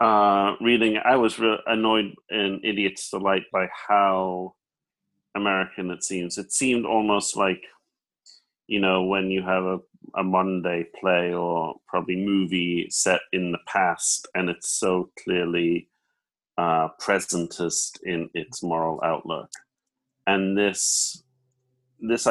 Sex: male